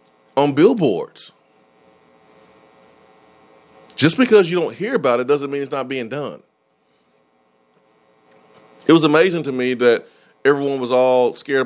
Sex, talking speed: male, 130 wpm